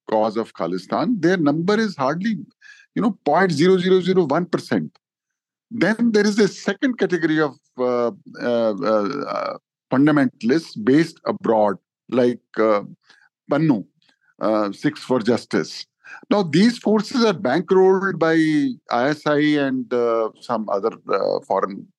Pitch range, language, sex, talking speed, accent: 145-215 Hz, English, male, 115 wpm, Indian